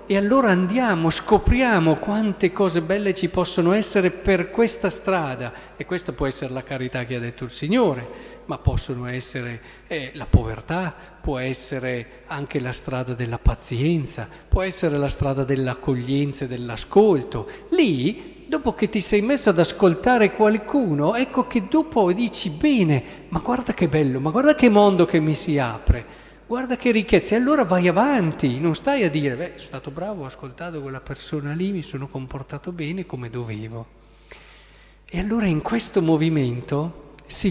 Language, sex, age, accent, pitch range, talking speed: Italian, male, 40-59, native, 140-200 Hz, 165 wpm